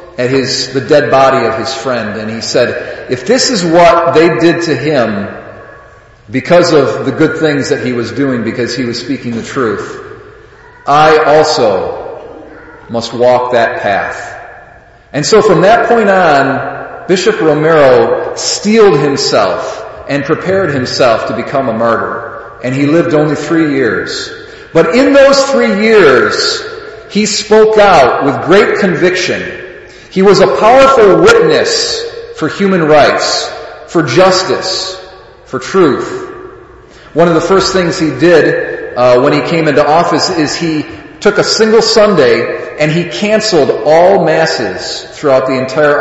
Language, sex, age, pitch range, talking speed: English, male, 40-59, 135-215 Hz, 145 wpm